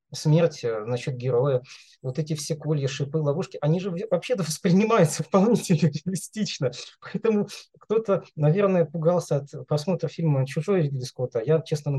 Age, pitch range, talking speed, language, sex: 20-39, 145-175 Hz, 135 wpm, Russian, male